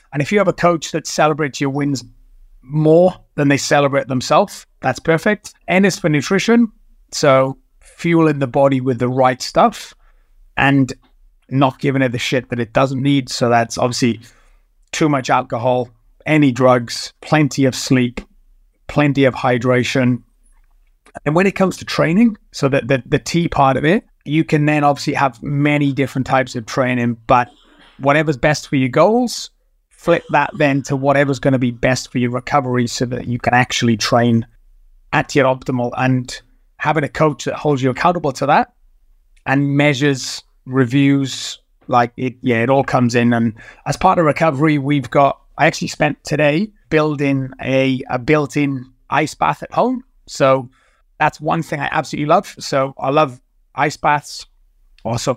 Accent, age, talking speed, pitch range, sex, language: British, 30-49, 170 wpm, 125-150 Hz, male, English